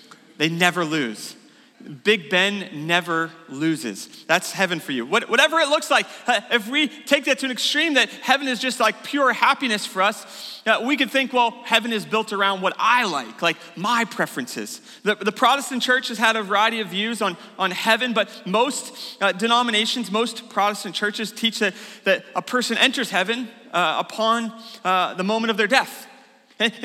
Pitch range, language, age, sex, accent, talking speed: 215-270 Hz, English, 30-49, male, American, 190 wpm